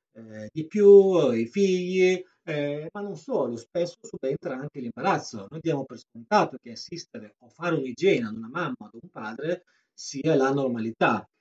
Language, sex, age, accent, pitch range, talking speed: Italian, male, 40-59, native, 120-195 Hz, 165 wpm